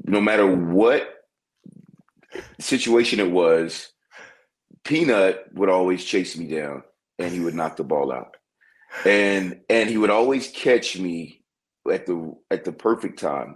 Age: 30-49